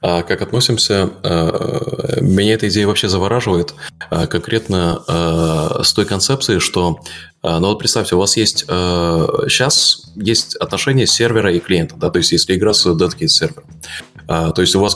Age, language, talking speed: 20-39, Russian, 150 wpm